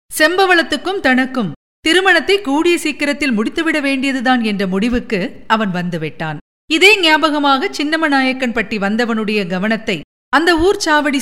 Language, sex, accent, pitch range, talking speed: Tamil, female, native, 220-305 Hz, 105 wpm